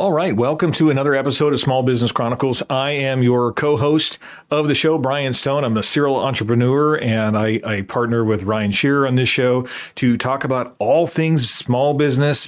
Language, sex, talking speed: English, male, 190 wpm